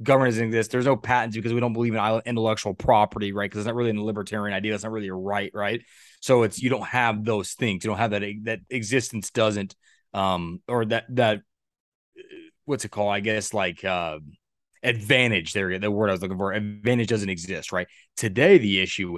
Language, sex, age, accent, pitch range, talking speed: English, male, 20-39, American, 100-120 Hz, 205 wpm